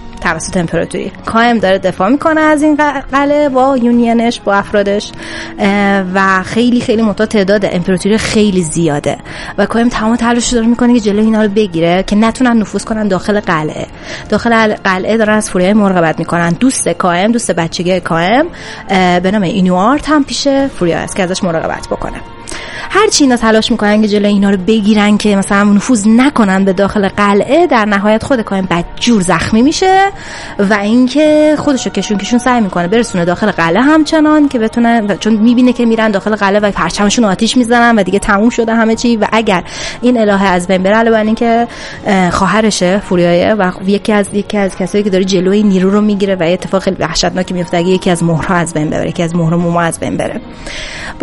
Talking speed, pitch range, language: 185 wpm, 185-235 Hz, Persian